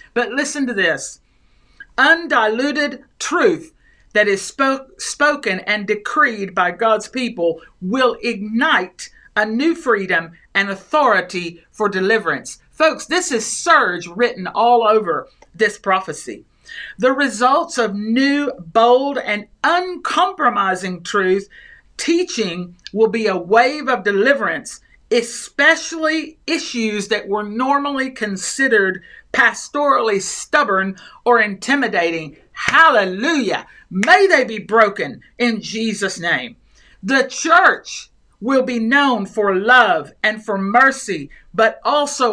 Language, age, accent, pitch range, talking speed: English, 50-69, American, 205-280 Hz, 110 wpm